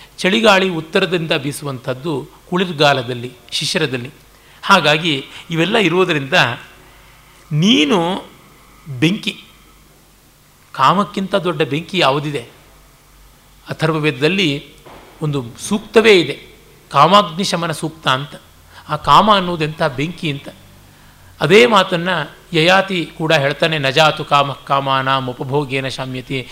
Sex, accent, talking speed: male, native, 80 wpm